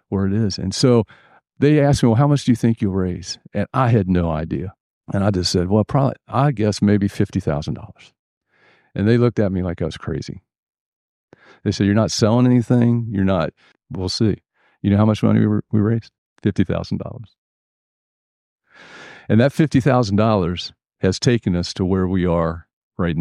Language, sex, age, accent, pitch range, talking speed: English, male, 50-69, American, 95-120 Hz, 185 wpm